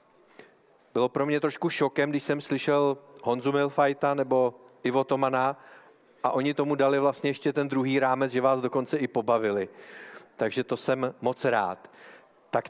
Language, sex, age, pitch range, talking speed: Czech, male, 40-59, 130-150 Hz, 155 wpm